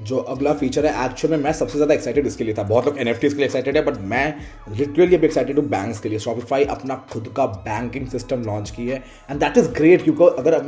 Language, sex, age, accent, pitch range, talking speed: Hindi, male, 20-39, native, 130-170 Hz, 260 wpm